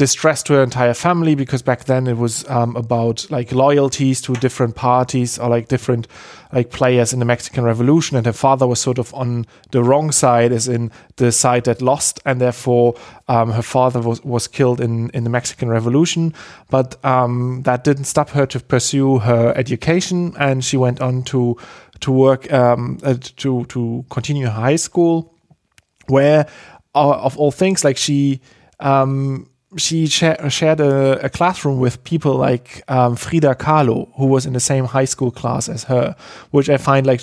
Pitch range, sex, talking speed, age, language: 120-140 Hz, male, 175 wpm, 30-49, English